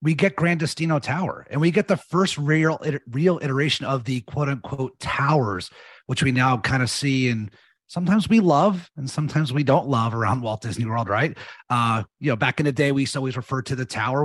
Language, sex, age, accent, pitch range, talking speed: English, male, 30-49, American, 120-145 Hz, 210 wpm